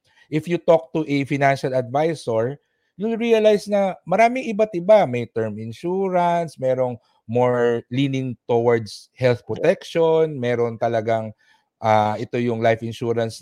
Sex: male